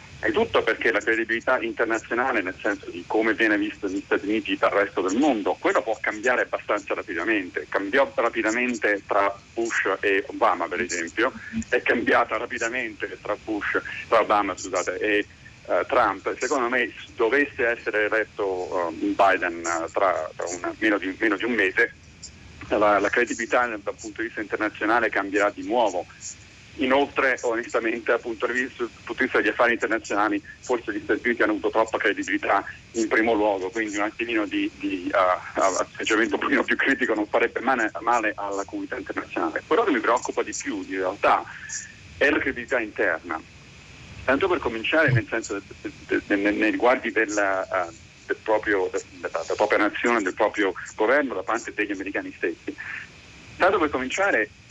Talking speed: 160 wpm